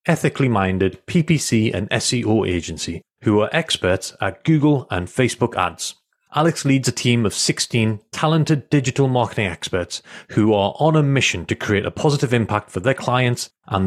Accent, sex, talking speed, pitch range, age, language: British, male, 160 wpm, 100-130 Hz, 40-59, English